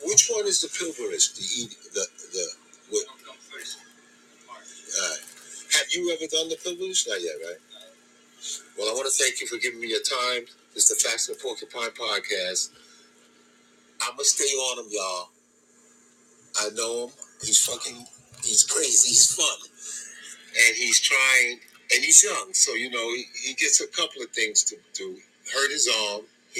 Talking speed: 175 wpm